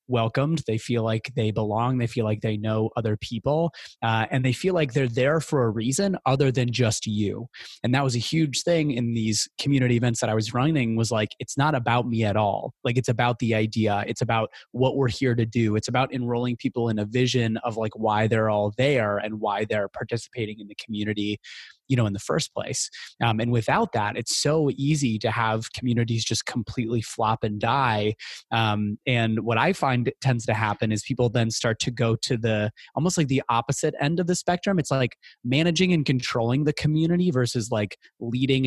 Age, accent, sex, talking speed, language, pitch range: 20-39, American, male, 225 wpm, English, 110-135 Hz